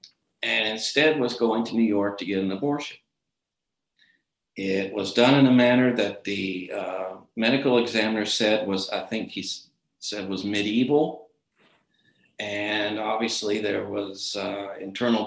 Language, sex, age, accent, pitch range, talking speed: English, male, 50-69, American, 105-135 Hz, 140 wpm